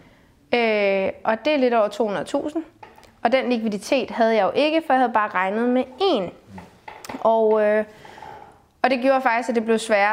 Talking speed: 170 wpm